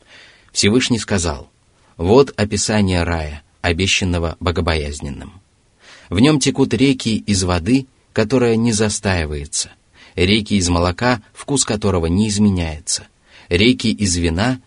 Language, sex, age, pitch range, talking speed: Russian, male, 30-49, 90-115 Hz, 105 wpm